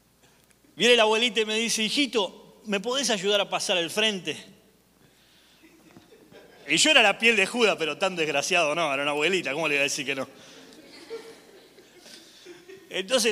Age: 30-49